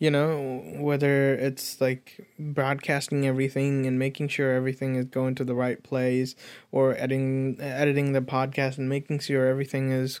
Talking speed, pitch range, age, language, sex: 160 wpm, 130-150 Hz, 20-39, English, male